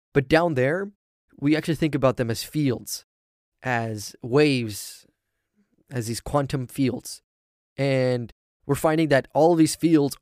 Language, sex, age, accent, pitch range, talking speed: English, male, 20-39, American, 120-155 Hz, 140 wpm